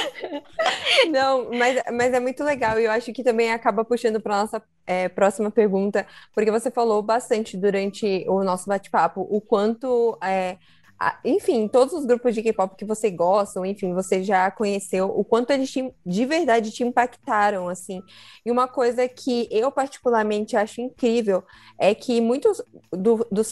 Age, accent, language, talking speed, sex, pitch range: 20-39, Brazilian, Portuguese, 165 wpm, female, 195-245 Hz